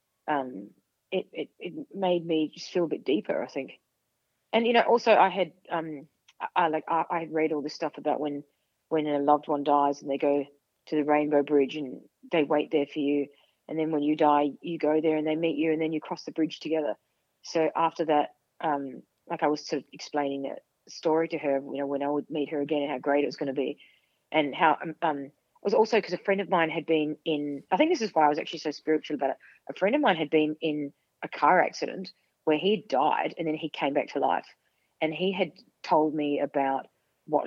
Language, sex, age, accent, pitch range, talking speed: English, female, 30-49, Australian, 145-165 Hz, 245 wpm